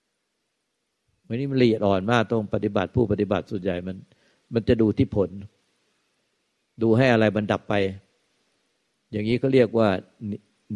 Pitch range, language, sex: 100-115 Hz, Thai, male